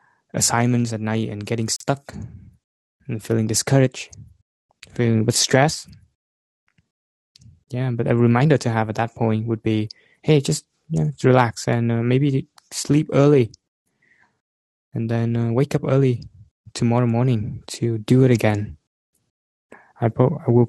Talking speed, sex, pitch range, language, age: 135 wpm, male, 110-125 Hz, English, 20-39